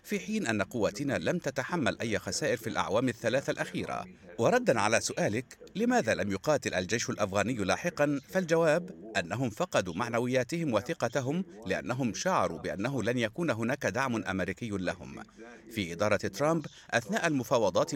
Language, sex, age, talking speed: Arabic, male, 50-69, 135 wpm